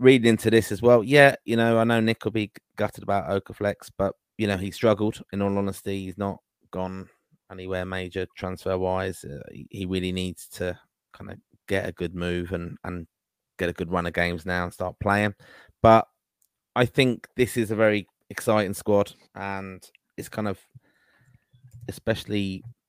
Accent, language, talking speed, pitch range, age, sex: British, English, 180 wpm, 90-100 Hz, 20-39, male